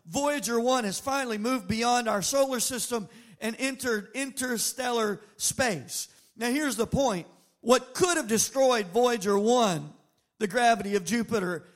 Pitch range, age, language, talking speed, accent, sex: 220-285 Hz, 50-69, English, 140 wpm, American, male